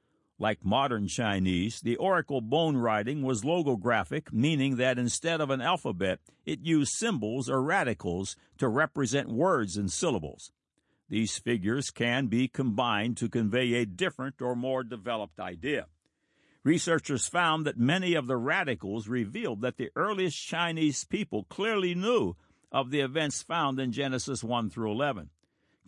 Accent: American